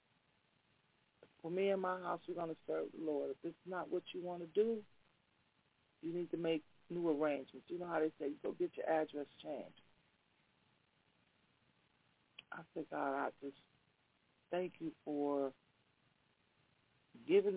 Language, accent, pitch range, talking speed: English, American, 150-175 Hz, 155 wpm